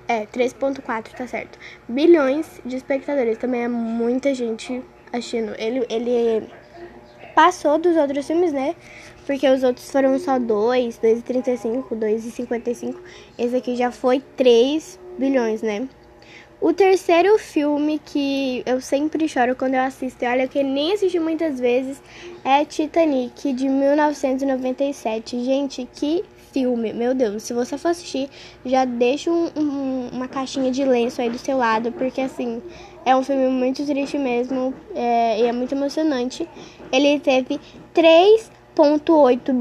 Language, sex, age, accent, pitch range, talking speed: Portuguese, female, 10-29, Brazilian, 245-305 Hz, 140 wpm